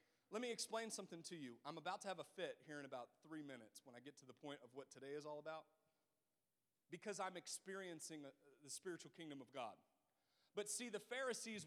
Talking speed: 215 wpm